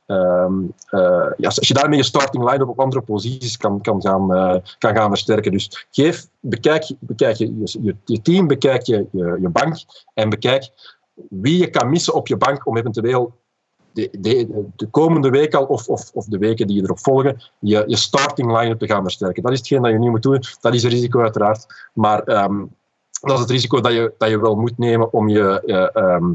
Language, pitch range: Dutch, 110-135 Hz